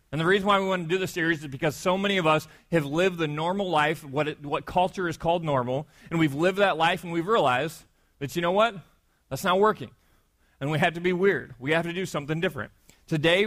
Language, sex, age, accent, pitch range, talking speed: English, male, 30-49, American, 165-225 Hz, 250 wpm